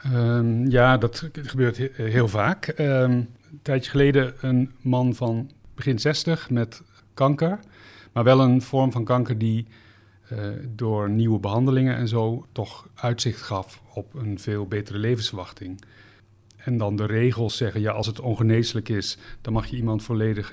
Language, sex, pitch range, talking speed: Dutch, male, 105-125 Hz, 150 wpm